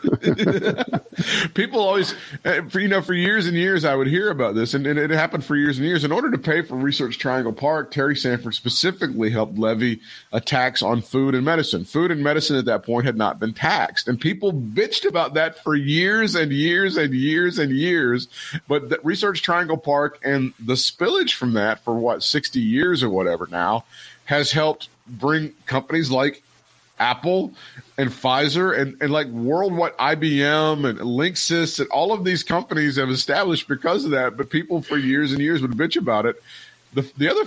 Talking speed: 190 wpm